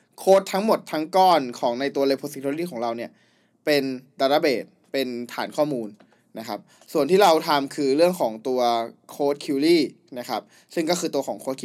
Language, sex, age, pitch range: Thai, male, 20-39, 130-175 Hz